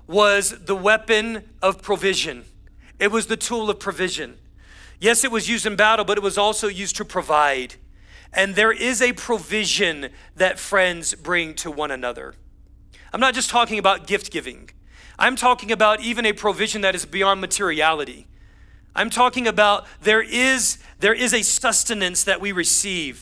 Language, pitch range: English, 185-225 Hz